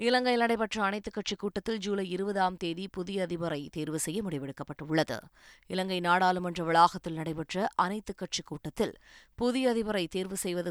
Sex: female